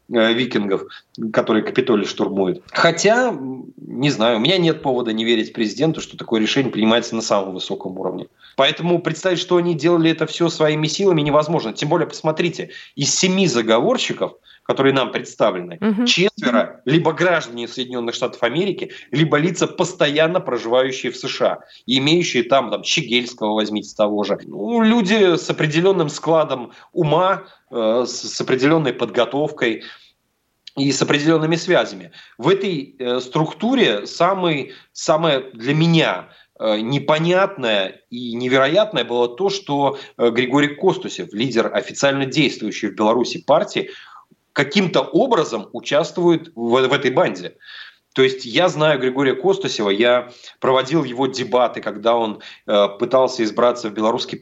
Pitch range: 120-165 Hz